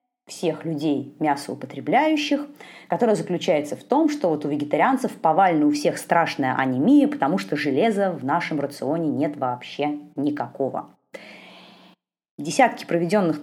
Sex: female